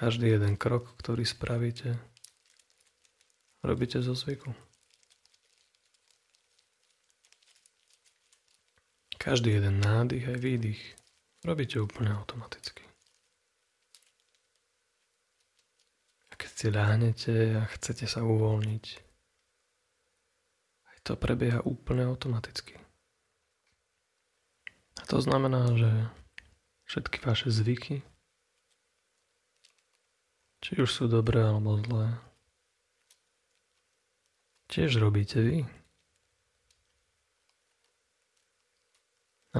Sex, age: male, 30-49